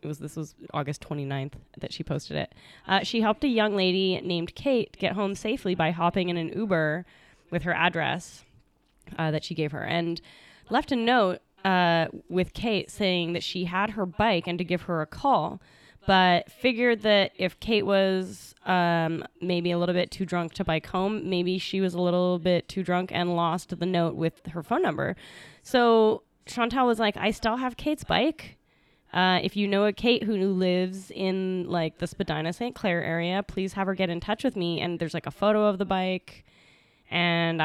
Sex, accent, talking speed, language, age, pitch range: female, American, 200 wpm, English, 10-29, 170-215 Hz